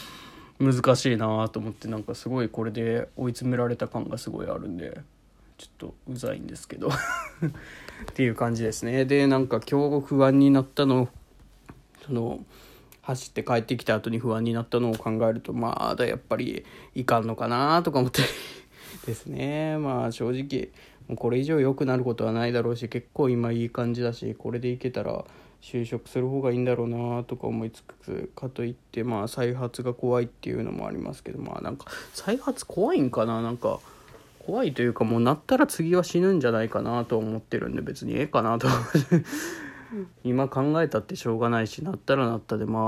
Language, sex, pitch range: Japanese, male, 115-135 Hz